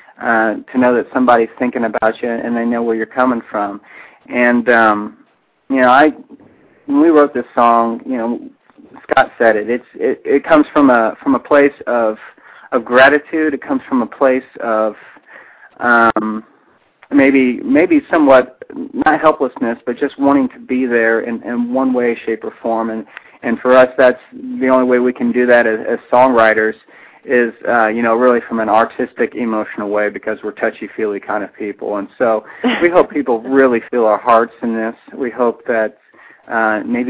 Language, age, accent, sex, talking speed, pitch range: English, 40-59, American, male, 185 wpm, 115-130 Hz